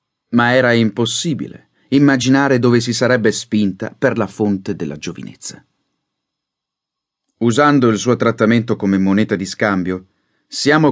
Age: 30-49